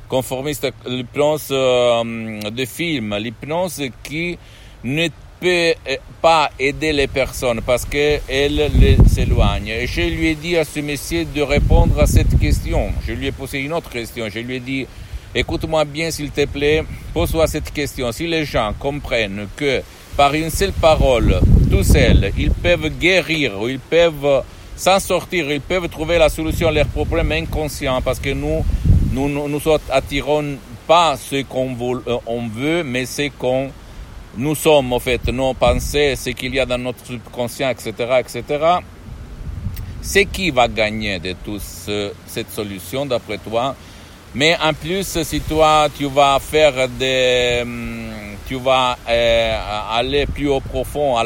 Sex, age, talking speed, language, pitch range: male, 60-79, 160 wpm, Italian, 115-150 Hz